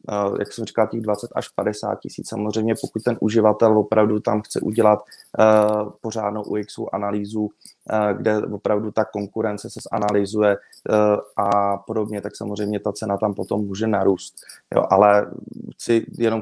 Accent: native